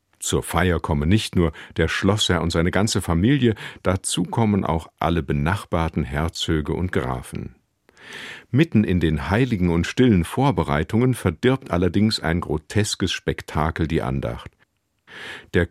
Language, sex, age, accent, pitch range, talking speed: German, male, 50-69, German, 80-105 Hz, 130 wpm